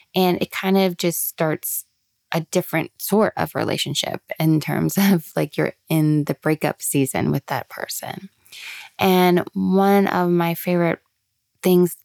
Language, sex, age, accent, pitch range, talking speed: English, female, 20-39, American, 150-180 Hz, 145 wpm